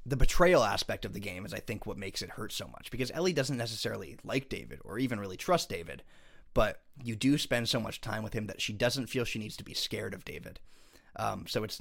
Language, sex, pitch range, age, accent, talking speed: English, male, 105-125 Hz, 20-39, American, 250 wpm